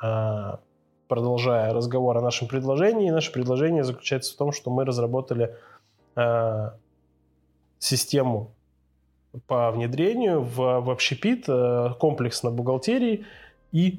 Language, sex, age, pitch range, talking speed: Russian, male, 20-39, 120-145 Hz, 105 wpm